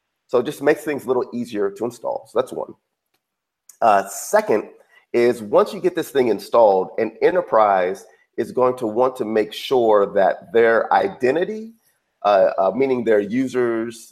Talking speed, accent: 165 wpm, American